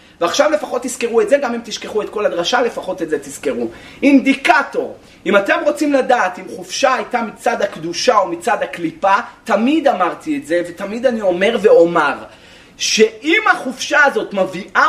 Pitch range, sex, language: 185-270 Hz, male, Hebrew